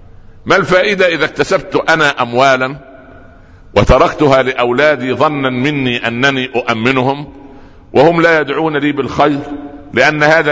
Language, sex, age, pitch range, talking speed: Arabic, male, 60-79, 115-160 Hz, 110 wpm